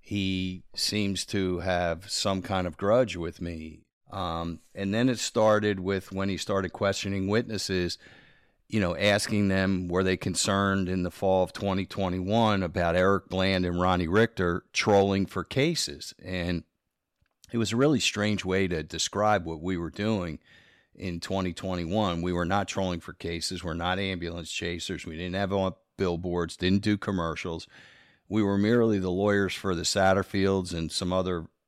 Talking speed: 160 wpm